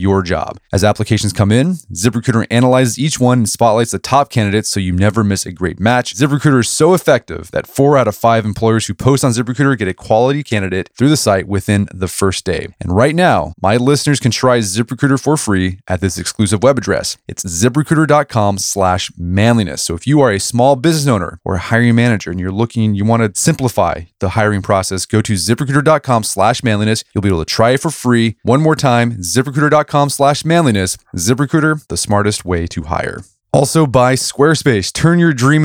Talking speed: 200 wpm